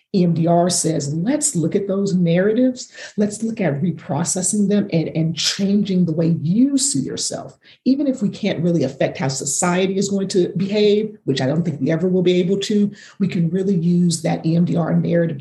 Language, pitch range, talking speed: English, 160-195 Hz, 190 wpm